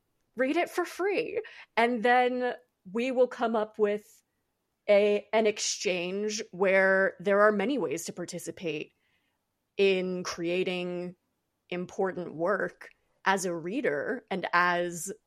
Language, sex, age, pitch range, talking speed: English, female, 30-49, 185-255 Hz, 120 wpm